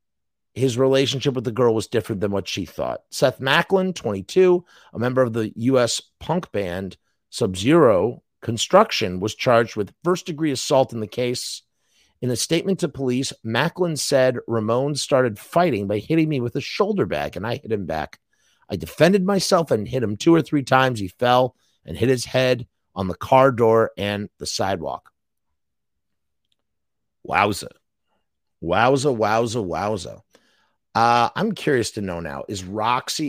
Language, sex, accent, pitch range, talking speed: English, male, American, 100-130 Hz, 160 wpm